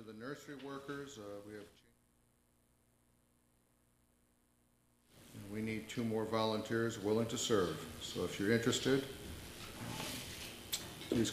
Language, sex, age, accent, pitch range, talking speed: English, male, 60-79, American, 105-135 Hz, 110 wpm